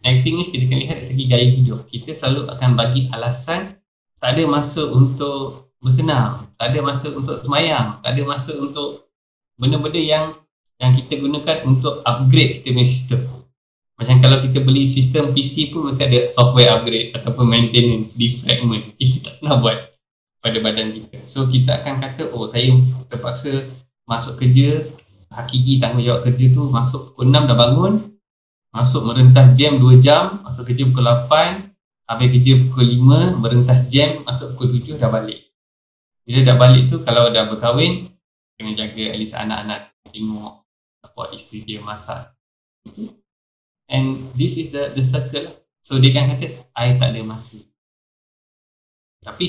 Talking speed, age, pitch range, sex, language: 160 wpm, 20-39, 120-140 Hz, male, Malay